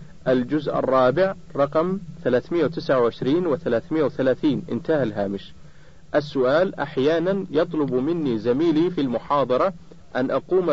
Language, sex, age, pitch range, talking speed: Arabic, male, 50-69, 135-180 Hz, 95 wpm